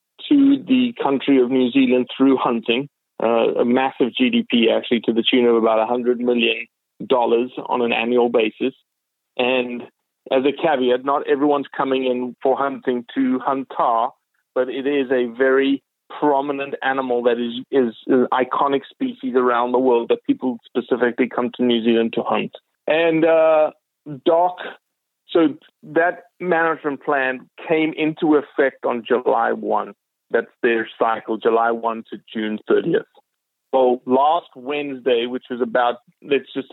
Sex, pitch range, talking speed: male, 120-145 Hz, 150 wpm